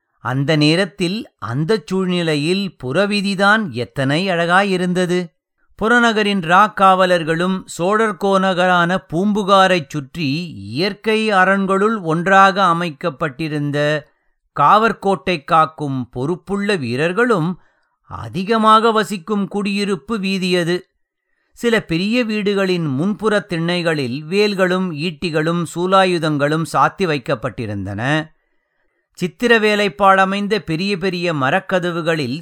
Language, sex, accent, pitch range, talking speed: English, male, Indian, 155-200 Hz, 80 wpm